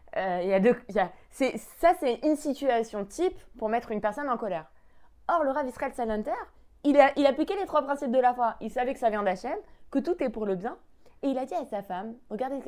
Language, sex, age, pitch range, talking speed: French, female, 20-39, 190-280 Hz, 240 wpm